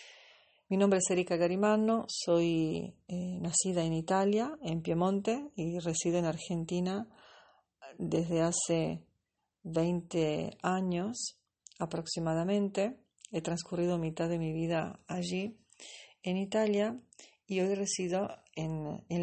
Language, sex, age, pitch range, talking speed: Italian, female, 40-59, 165-200 Hz, 110 wpm